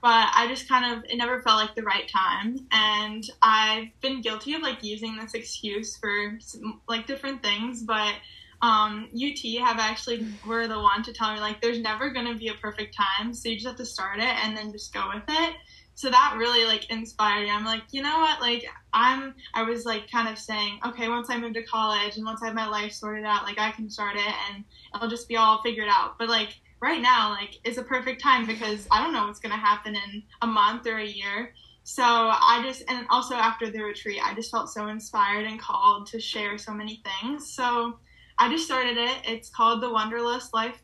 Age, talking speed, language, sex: 10-29, 230 wpm, English, female